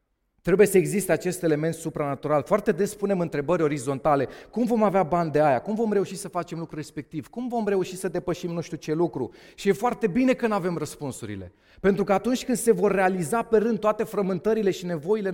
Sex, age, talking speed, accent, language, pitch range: male, 30-49, 205 wpm, native, Romanian, 125-190 Hz